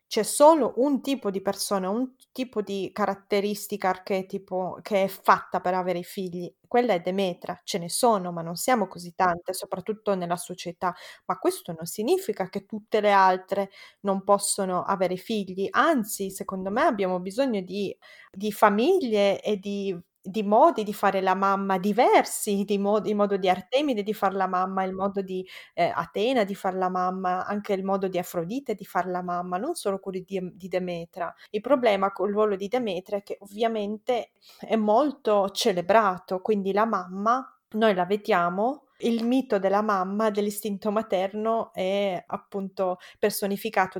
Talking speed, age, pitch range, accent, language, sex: 170 wpm, 20-39, 185-210 Hz, native, Italian, female